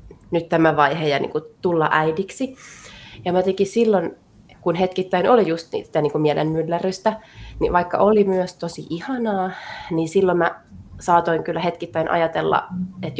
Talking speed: 145 wpm